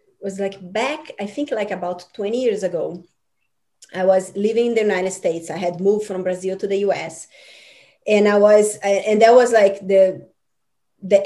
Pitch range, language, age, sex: 185-215 Hz, English, 20-39, female